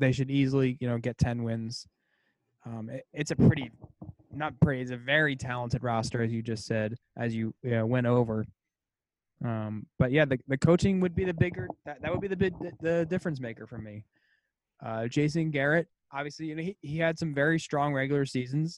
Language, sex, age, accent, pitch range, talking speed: English, male, 20-39, American, 125-155 Hz, 210 wpm